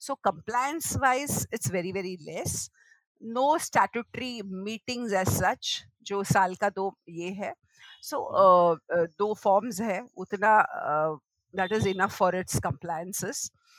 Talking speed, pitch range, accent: 115 wpm, 175-235 Hz, Indian